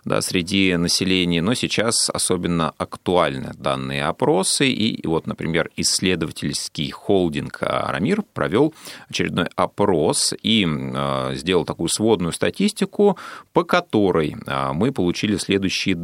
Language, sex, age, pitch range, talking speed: Russian, male, 30-49, 80-110 Hz, 105 wpm